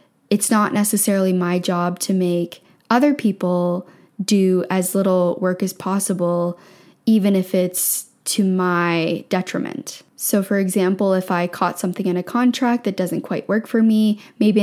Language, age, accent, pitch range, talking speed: English, 10-29, American, 185-210 Hz, 155 wpm